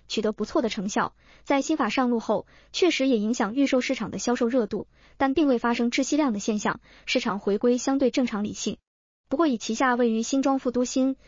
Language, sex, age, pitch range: Chinese, male, 20-39, 225-275 Hz